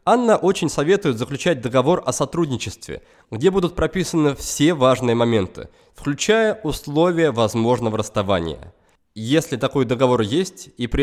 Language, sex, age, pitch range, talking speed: Russian, male, 20-39, 115-165 Hz, 125 wpm